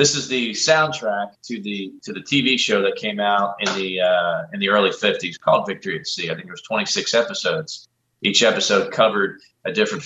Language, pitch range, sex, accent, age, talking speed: English, 95-120 Hz, male, American, 30-49, 215 wpm